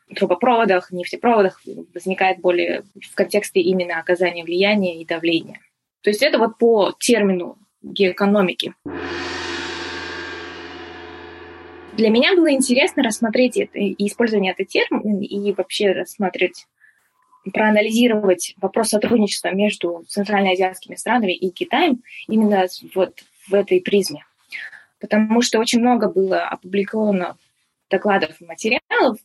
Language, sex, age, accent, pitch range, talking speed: Russian, female, 20-39, native, 185-230 Hz, 110 wpm